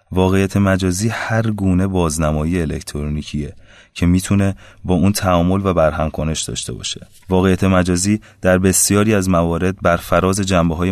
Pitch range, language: 85-100 Hz, Persian